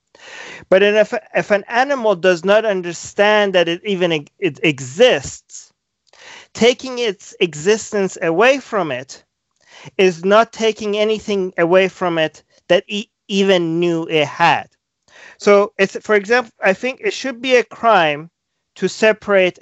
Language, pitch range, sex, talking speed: English, 160-205 Hz, male, 135 wpm